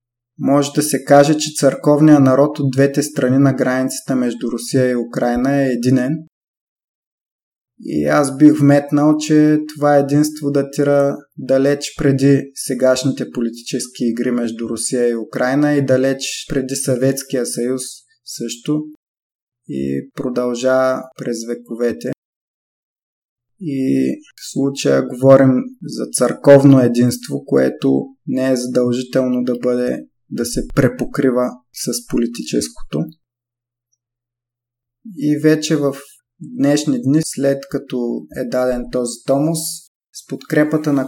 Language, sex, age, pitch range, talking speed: Bulgarian, male, 20-39, 120-145 Hz, 110 wpm